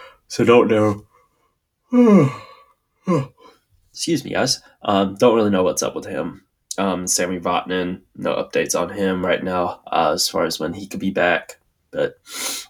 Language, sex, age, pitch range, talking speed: English, male, 10-29, 95-105 Hz, 155 wpm